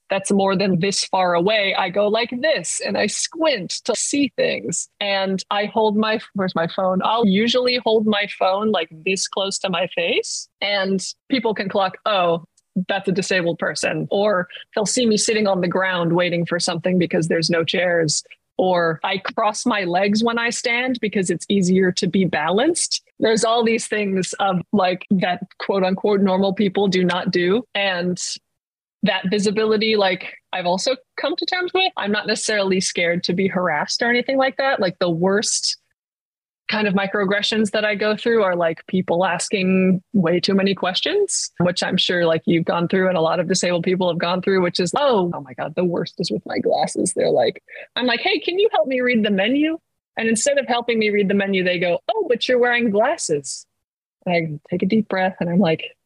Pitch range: 180-225 Hz